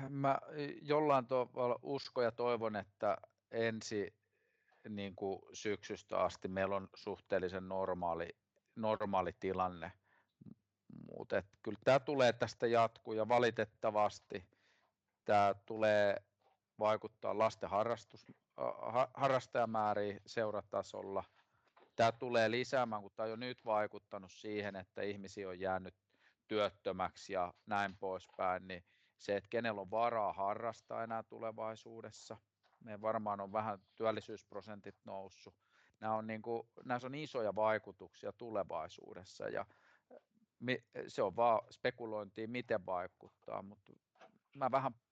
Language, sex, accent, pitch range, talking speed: Finnish, male, native, 100-120 Hz, 110 wpm